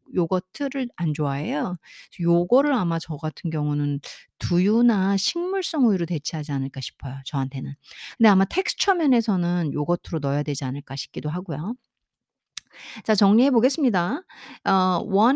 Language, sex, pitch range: Korean, female, 160-235 Hz